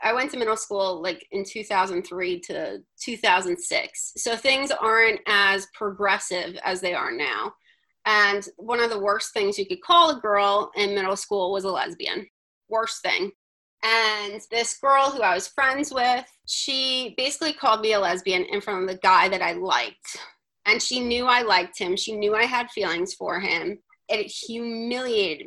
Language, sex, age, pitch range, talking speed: English, female, 30-49, 200-270 Hz, 175 wpm